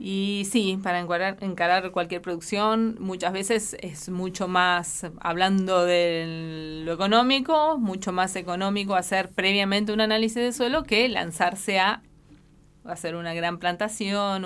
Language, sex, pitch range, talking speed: Spanish, female, 170-200 Hz, 135 wpm